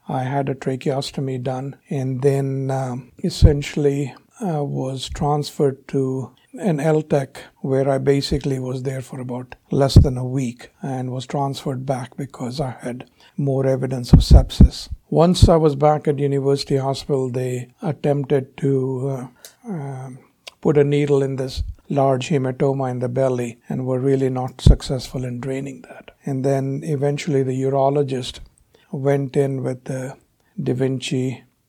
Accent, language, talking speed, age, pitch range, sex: Indian, English, 145 wpm, 60-79, 130-145 Hz, male